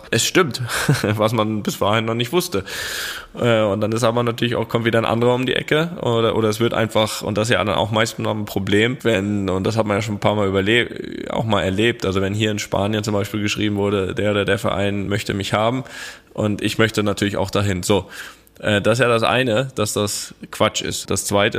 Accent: German